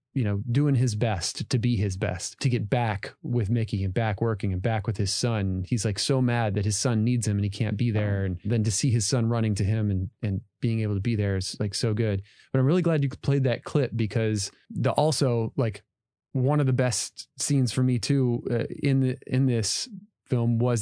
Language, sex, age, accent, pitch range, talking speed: English, male, 30-49, American, 110-130 Hz, 240 wpm